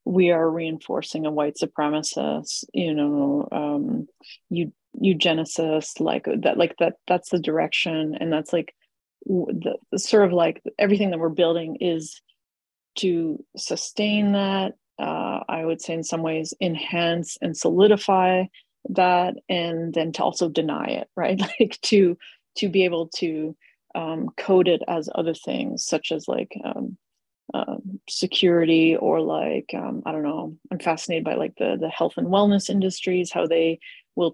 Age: 30-49